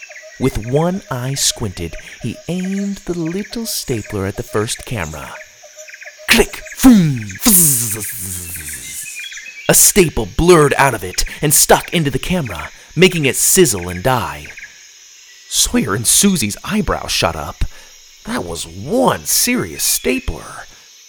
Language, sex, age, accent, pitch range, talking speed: English, male, 40-59, American, 100-160 Hz, 120 wpm